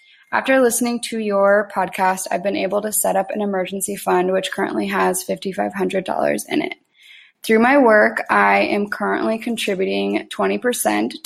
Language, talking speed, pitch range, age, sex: English, 150 wpm, 185-215 Hz, 10-29, female